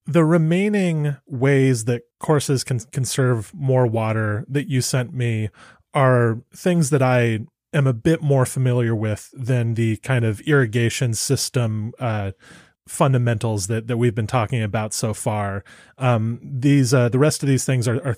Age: 30-49